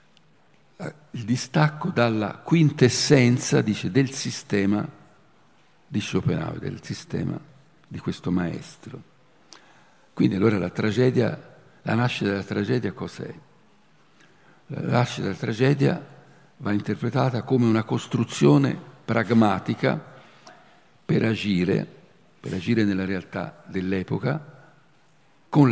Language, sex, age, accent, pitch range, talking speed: Italian, male, 50-69, native, 100-130 Hz, 95 wpm